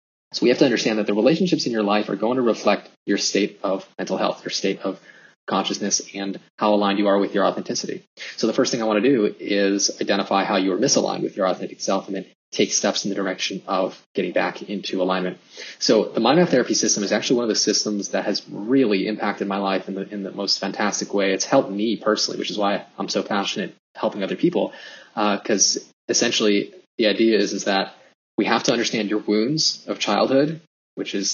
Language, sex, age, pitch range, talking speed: English, male, 20-39, 100-115 Hz, 220 wpm